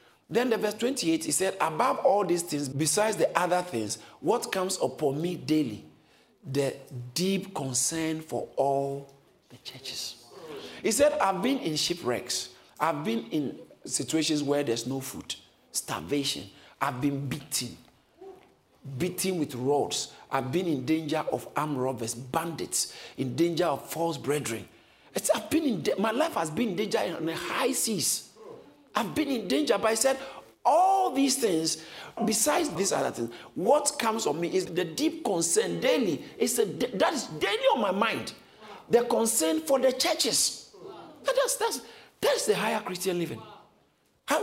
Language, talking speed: English, 160 wpm